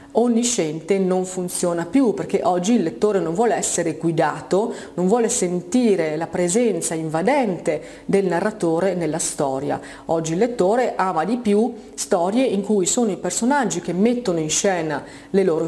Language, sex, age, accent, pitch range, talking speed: Italian, female, 40-59, native, 170-210 Hz, 155 wpm